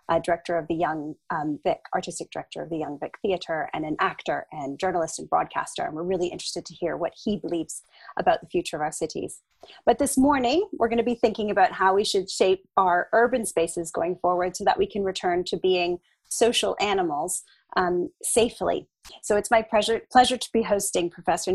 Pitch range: 175-230 Hz